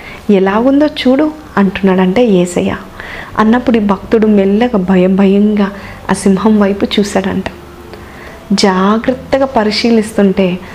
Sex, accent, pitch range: female, native, 200-245 Hz